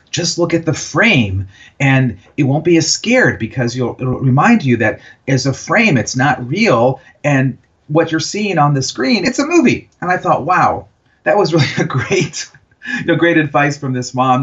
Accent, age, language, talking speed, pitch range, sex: American, 40-59, English, 205 wpm, 115-145 Hz, male